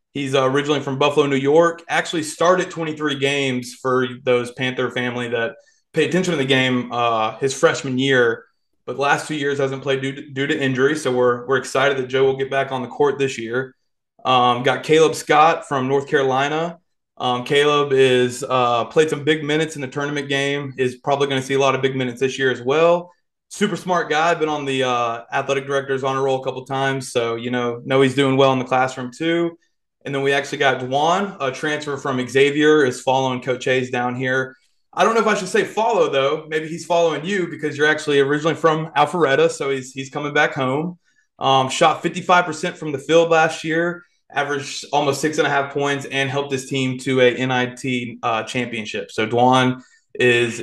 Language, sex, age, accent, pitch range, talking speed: English, male, 30-49, American, 130-155 Hz, 210 wpm